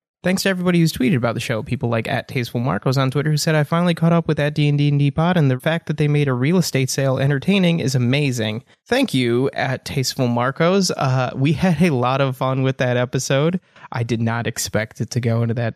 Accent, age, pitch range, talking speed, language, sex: American, 20-39, 120-145 Hz, 230 wpm, English, male